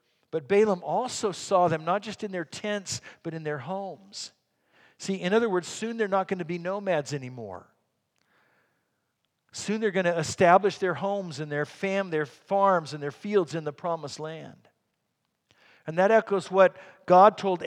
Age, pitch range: 50-69, 155-200 Hz